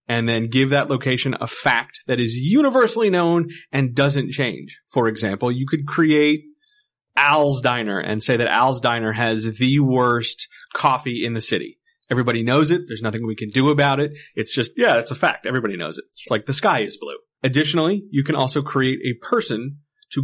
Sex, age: male, 30-49